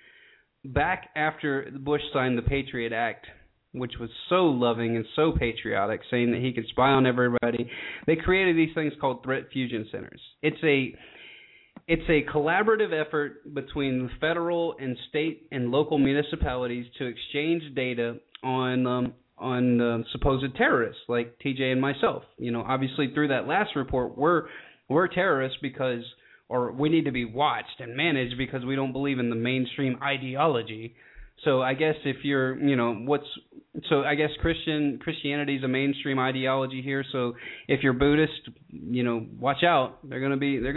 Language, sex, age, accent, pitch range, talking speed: English, male, 20-39, American, 120-150 Hz, 165 wpm